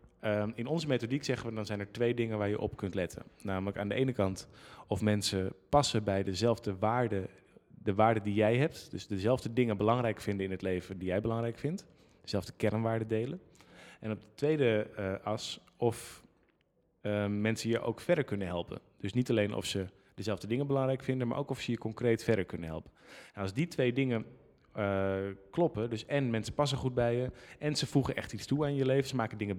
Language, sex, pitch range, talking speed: Dutch, male, 100-120 Hz, 210 wpm